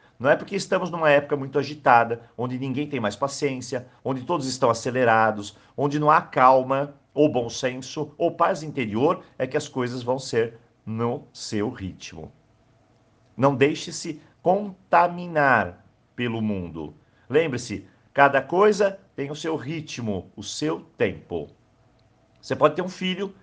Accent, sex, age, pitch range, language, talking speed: Brazilian, male, 50-69, 120-160 Hz, Portuguese, 145 wpm